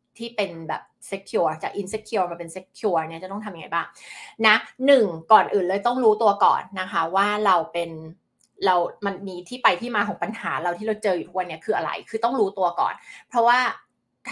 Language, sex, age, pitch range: Thai, female, 20-39, 190-230 Hz